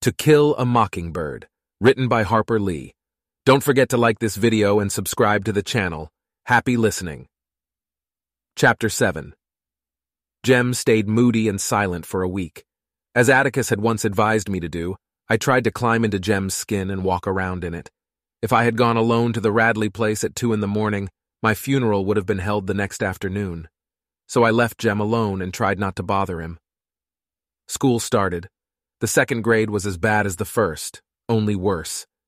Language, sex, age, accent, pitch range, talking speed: English, male, 30-49, American, 95-115 Hz, 180 wpm